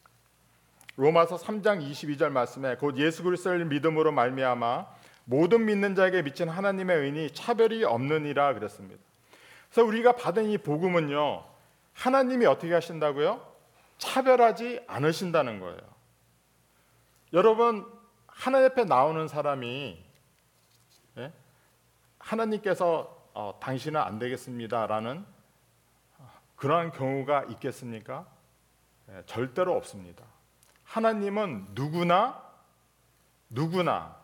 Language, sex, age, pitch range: Korean, male, 40-59, 135-210 Hz